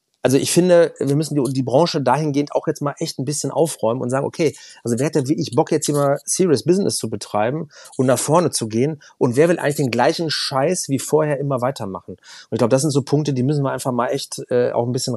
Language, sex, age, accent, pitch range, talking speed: German, male, 30-49, German, 120-150 Hz, 255 wpm